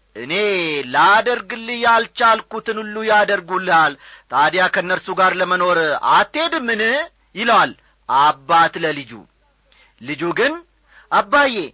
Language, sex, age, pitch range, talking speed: Amharic, male, 40-59, 170-235 Hz, 80 wpm